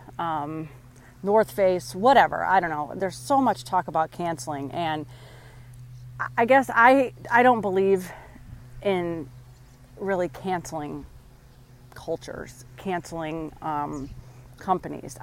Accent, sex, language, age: American, female, English, 30-49